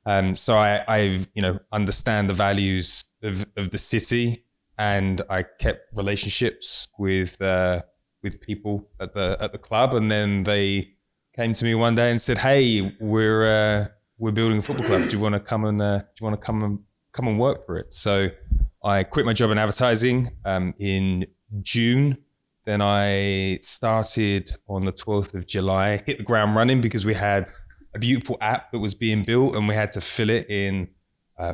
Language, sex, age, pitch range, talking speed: English, male, 20-39, 95-110 Hz, 195 wpm